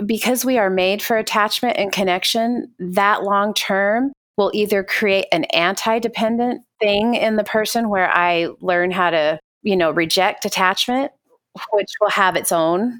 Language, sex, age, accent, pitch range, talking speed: English, female, 30-49, American, 175-220 Hz, 155 wpm